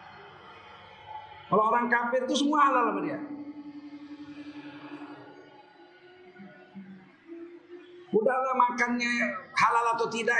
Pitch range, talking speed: 235-315 Hz, 75 wpm